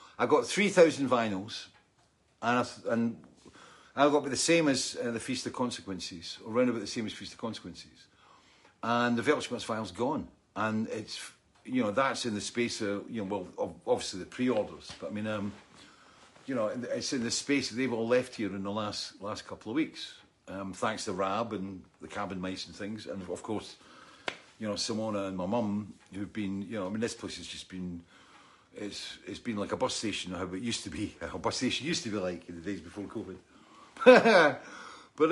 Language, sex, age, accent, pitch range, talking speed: English, male, 50-69, British, 100-135 Hz, 210 wpm